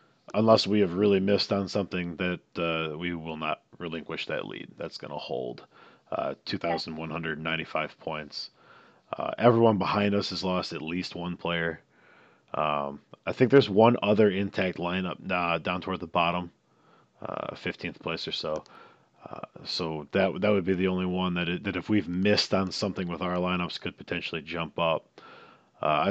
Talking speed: 170 wpm